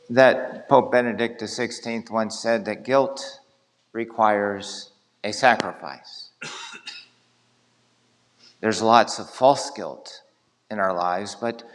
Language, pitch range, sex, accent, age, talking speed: English, 105-125 Hz, male, American, 50-69, 100 wpm